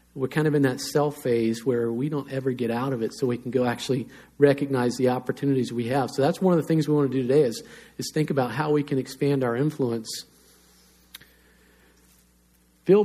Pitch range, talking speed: 125-150 Hz, 215 wpm